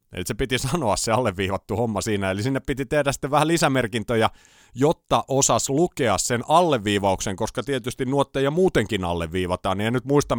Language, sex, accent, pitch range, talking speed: Finnish, male, native, 110-140 Hz, 160 wpm